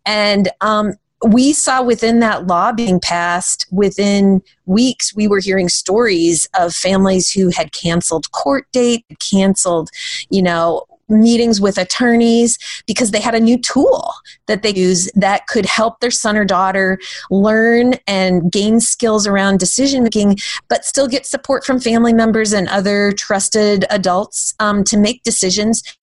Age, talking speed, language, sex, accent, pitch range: 30-49, 150 wpm, English, female, American, 185-230 Hz